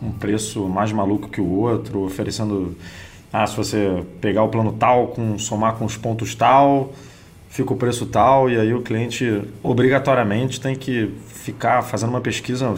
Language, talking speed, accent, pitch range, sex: Portuguese, 175 wpm, Brazilian, 100-125 Hz, male